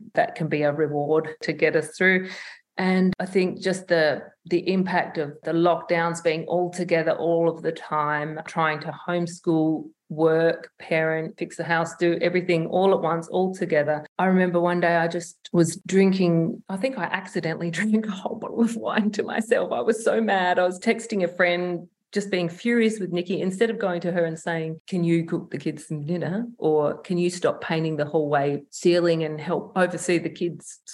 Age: 40-59